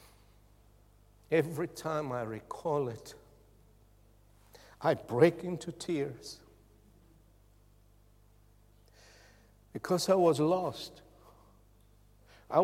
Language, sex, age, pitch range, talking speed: English, male, 60-79, 110-165 Hz, 65 wpm